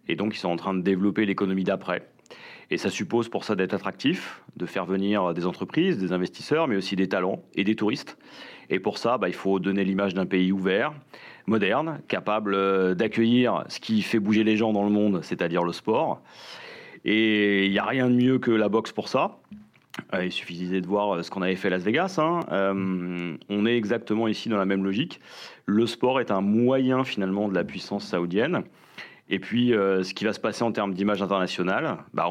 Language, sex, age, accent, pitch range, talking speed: French, male, 30-49, French, 95-110 Hz, 210 wpm